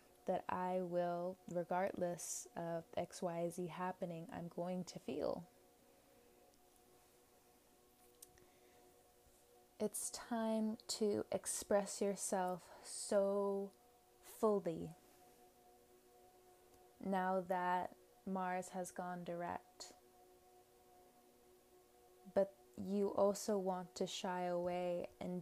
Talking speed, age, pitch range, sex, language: 80 wpm, 20-39, 120-200 Hz, female, English